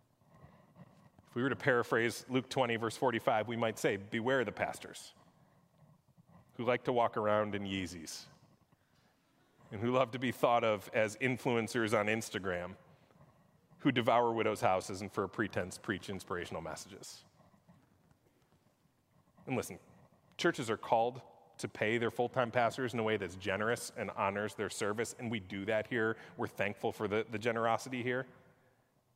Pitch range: 110-155 Hz